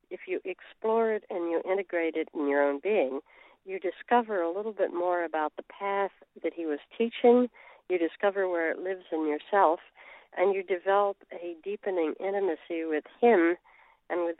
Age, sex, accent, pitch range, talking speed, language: 60-79, female, American, 160-205 Hz, 175 wpm, English